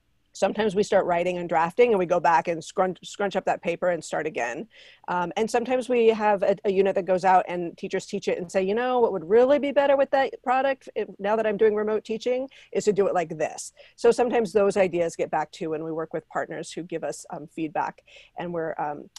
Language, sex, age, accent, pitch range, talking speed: English, female, 40-59, American, 170-210 Hz, 245 wpm